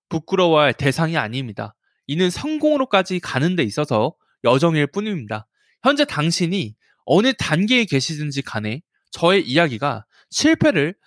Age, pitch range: 20-39, 125-180 Hz